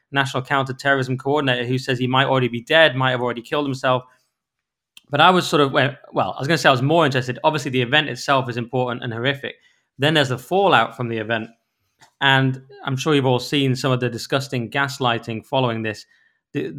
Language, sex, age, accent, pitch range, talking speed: English, male, 20-39, British, 125-155 Hz, 210 wpm